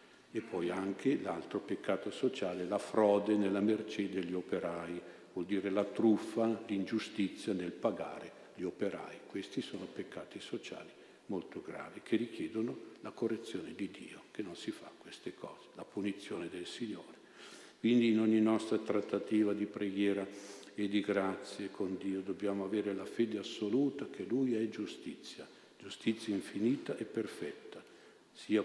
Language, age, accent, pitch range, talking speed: Italian, 50-69, native, 100-115 Hz, 145 wpm